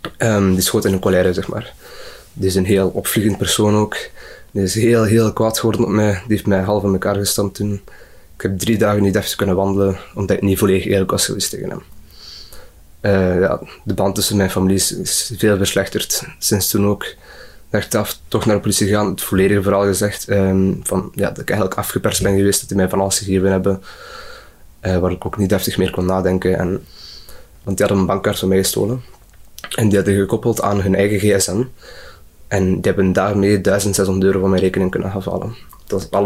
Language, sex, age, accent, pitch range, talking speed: Dutch, male, 20-39, Belgian, 95-105 Hz, 215 wpm